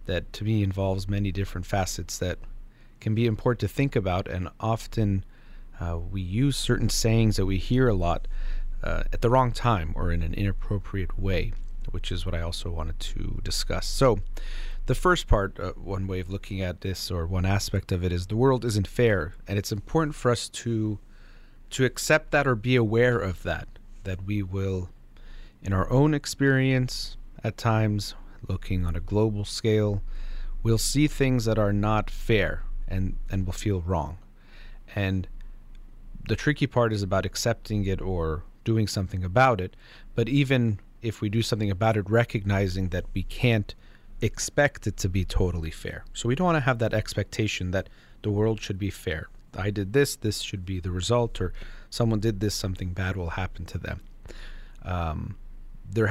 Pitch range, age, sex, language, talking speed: 95-115 Hz, 30-49, male, English, 180 wpm